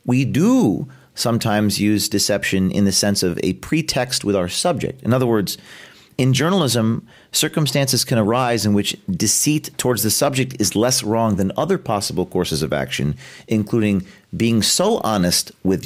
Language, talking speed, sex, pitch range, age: English, 160 wpm, male, 100-135 Hz, 40-59